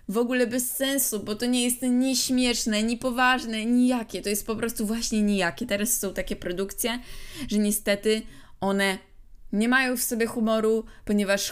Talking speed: 165 wpm